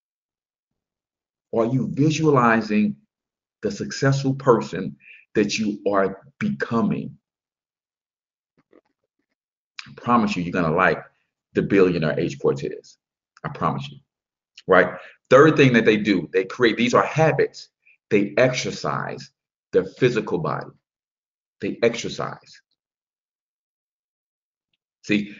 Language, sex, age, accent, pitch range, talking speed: English, male, 50-69, American, 110-150 Hz, 100 wpm